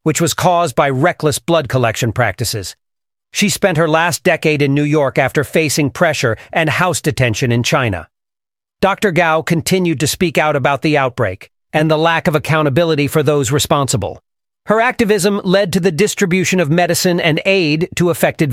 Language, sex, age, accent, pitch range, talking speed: English, male, 40-59, American, 145-180 Hz, 170 wpm